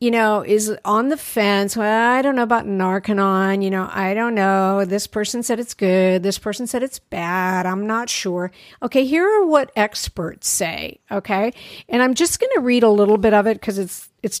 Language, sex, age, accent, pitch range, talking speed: English, female, 50-69, American, 190-225 Hz, 210 wpm